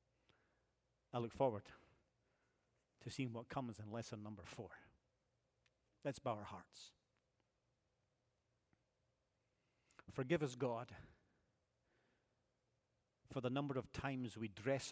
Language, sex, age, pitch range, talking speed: English, male, 40-59, 110-135 Hz, 100 wpm